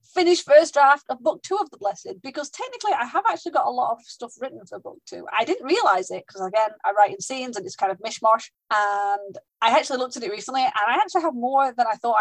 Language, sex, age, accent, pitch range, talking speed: English, female, 30-49, British, 210-315 Hz, 260 wpm